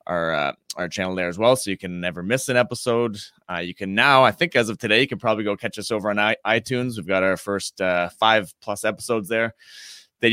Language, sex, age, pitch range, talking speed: English, male, 20-39, 95-115 Hz, 250 wpm